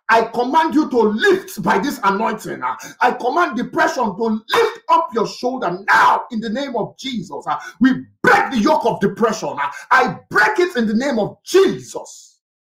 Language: English